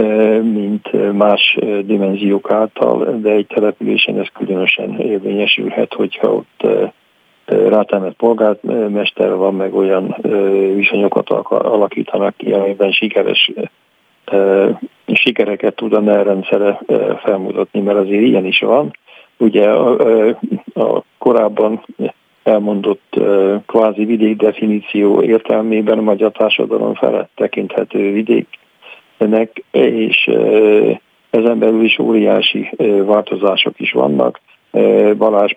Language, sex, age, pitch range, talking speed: Hungarian, male, 50-69, 100-110 Hz, 90 wpm